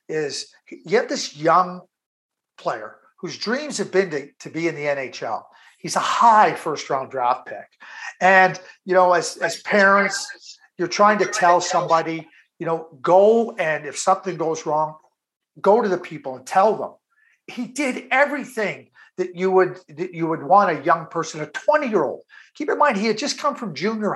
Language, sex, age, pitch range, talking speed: English, male, 50-69, 170-235 Hz, 175 wpm